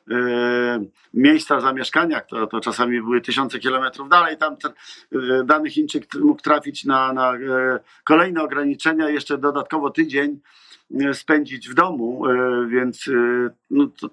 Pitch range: 130-165 Hz